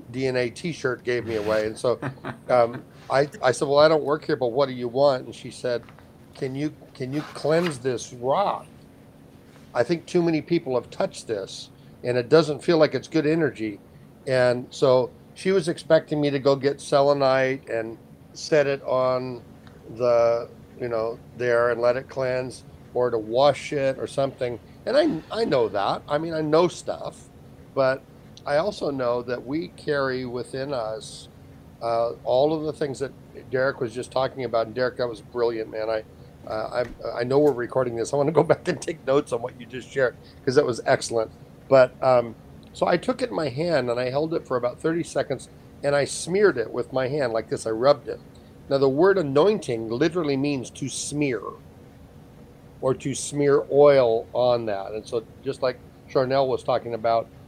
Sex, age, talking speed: male, 60-79, 195 wpm